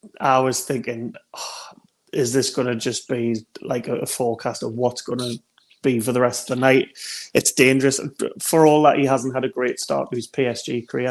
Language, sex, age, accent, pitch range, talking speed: English, male, 30-49, British, 120-140 Hz, 210 wpm